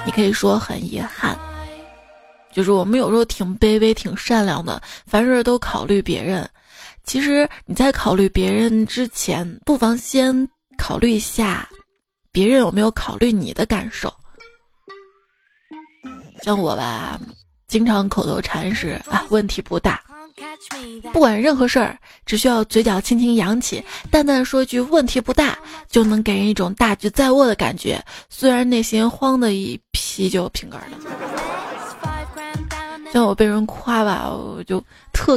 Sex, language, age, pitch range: female, Chinese, 20-39, 205-265 Hz